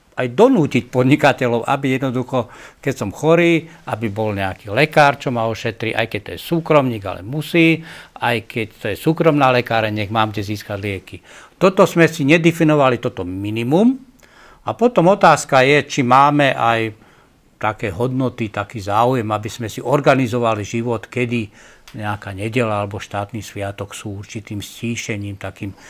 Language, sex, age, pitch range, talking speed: Slovak, male, 60-79, 110-150 Hz, 150 wpm